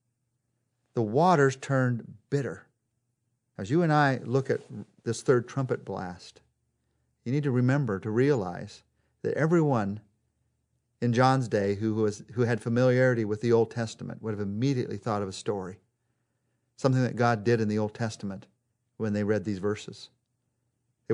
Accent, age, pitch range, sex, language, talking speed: American, 50-69, 110-135 Hz, male, English, 155 wpm